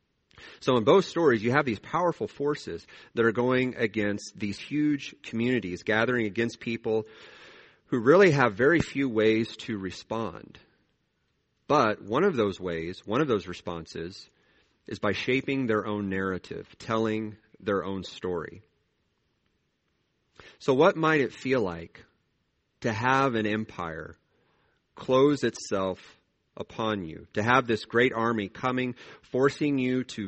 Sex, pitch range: male, 100-130 Hz